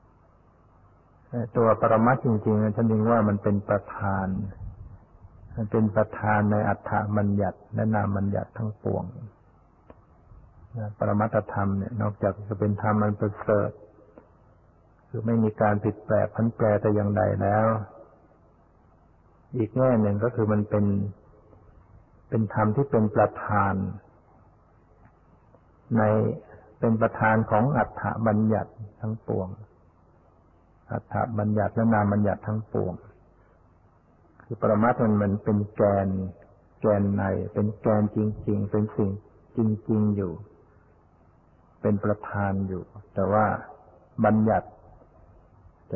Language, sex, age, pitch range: Thai, male, 60-79, 90-110 Hz